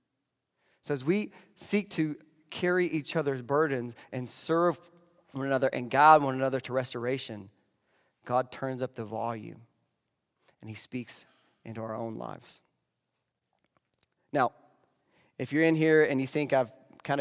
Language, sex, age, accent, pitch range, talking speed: English, male, 30-49, American, 130-160 Hz, 145 wpm